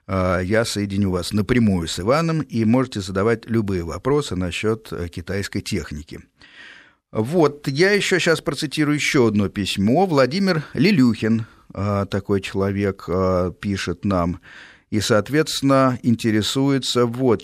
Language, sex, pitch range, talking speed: Russian, male, 95-130 Hz, 110 wpm